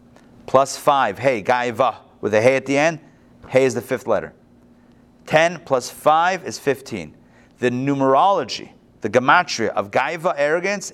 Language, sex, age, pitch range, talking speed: English, male, 40-59, 130-185 Hz, 150 wpm